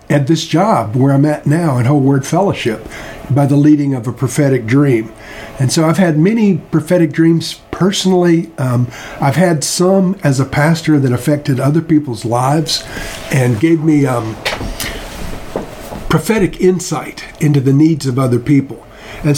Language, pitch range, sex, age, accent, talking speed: English, 130-165 Hz, male, 50-69, American, 160 wpm